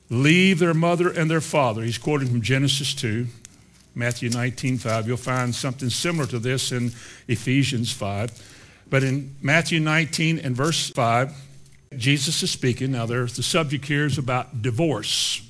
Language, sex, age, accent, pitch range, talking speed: English, male, 60-79, American, 120-145 Hz, 155 wpm